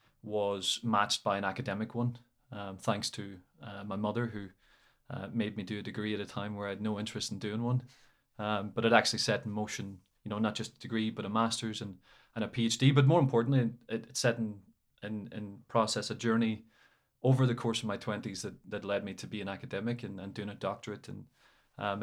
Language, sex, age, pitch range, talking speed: English, male, 20-39, 105-120 Hz, 225 wpm